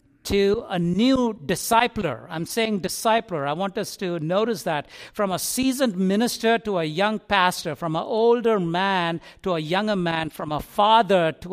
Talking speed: 170 wpm